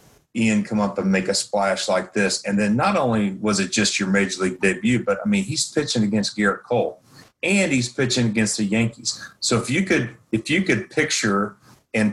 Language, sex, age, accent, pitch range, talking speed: English, male, 40-59, American, 105-125 Hz, 215 wpm